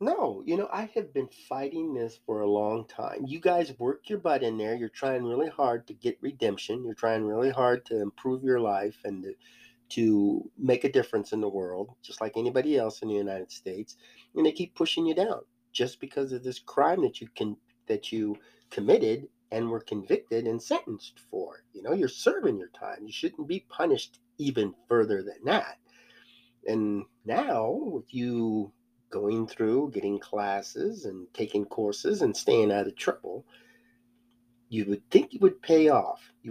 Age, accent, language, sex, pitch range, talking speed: 40-59, American, English, male, 110-155 Hz, 180 wpm